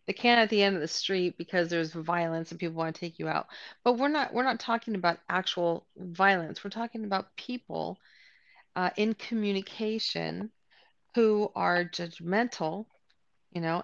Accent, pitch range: American, 180-215 Hz